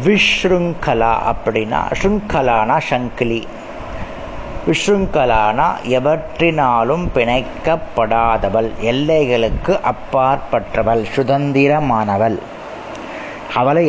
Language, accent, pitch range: Tamil, native, 115-160 Hz